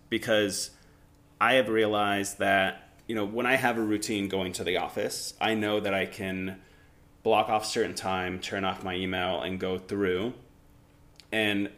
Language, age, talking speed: English, 30-49, 170 wpm